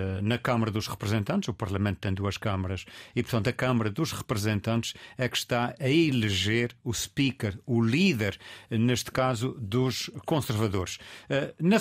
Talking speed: 145 wpm